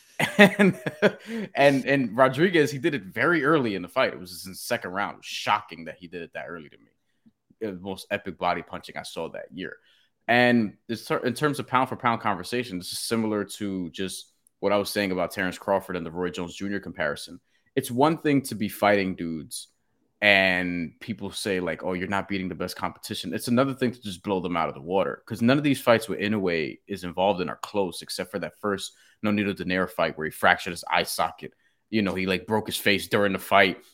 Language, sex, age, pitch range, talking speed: English, male, 20-39, 95-135 Hz, 230 wpm